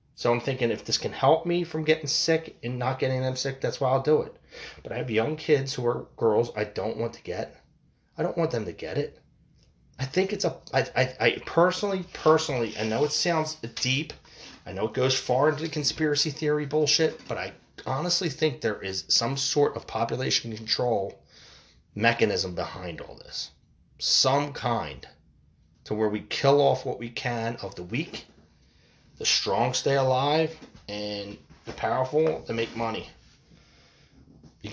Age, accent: 30-49, American